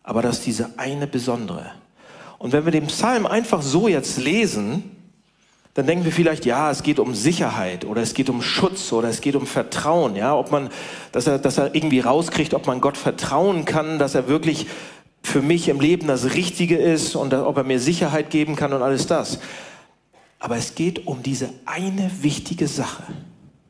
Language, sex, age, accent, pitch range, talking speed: German, male, 40-59, German, 135-195 Hz, 190 wpm